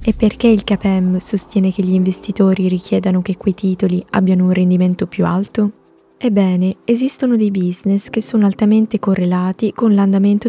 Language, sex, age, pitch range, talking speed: Italian, female, 20-39, 190-230 Hz, 155 wpm